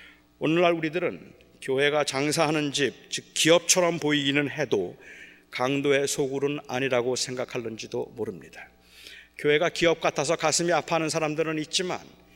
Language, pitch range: Korean, 125-175 Hz